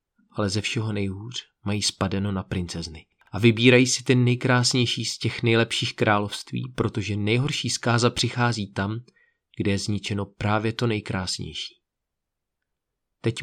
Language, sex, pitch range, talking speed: Czech, male, 105-125 Hz, 130 wpm